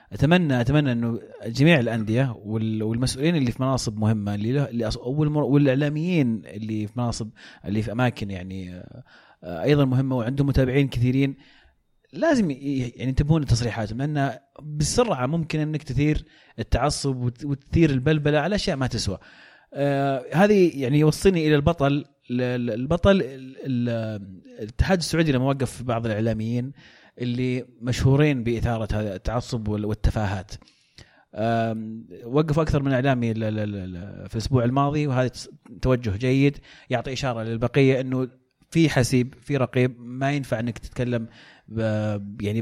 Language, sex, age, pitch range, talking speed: Arabic, male, 30-49, 115-145 Hz, 115 wpm